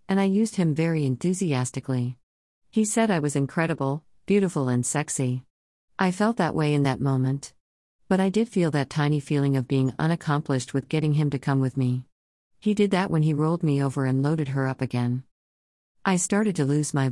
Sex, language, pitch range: female, English, 130-160 Hz